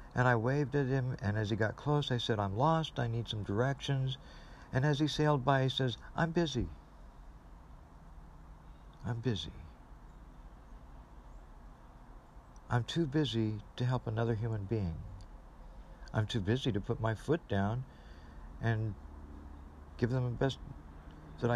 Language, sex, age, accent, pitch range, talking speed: English, male, 50-69, American, 85-125 Hz, 140 wpm